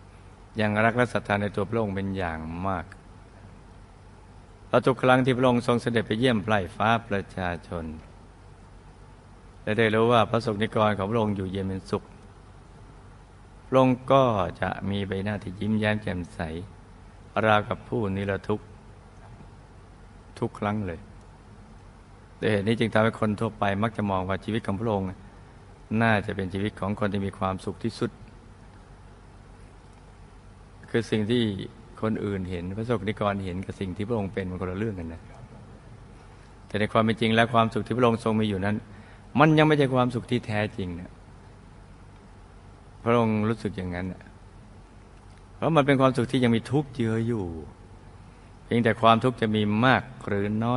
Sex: male